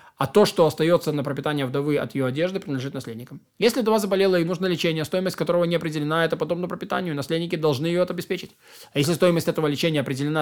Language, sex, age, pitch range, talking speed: Russian, male, 20-39, 155-195 Hz, 200 wpm